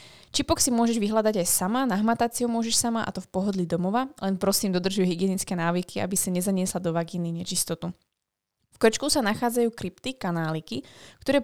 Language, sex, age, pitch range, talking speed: Slovak, female, 20-39, 185-220 Hz, 170 wpm